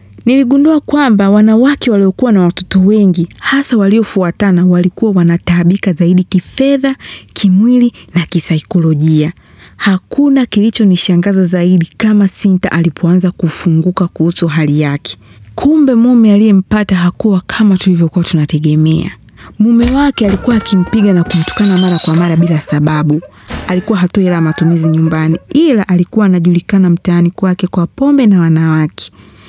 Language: Swahili